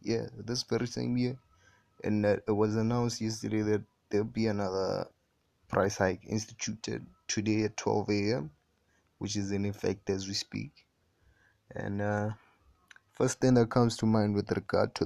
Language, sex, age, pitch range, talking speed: English, male, 20-39, 100-115 Hz, 165 wpm